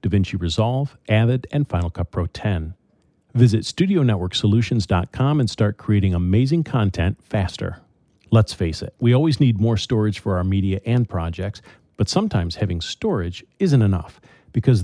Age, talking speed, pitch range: 40-59, 145 wpm, 95-125 Hz